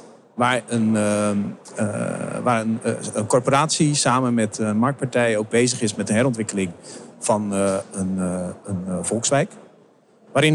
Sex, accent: male, Dutch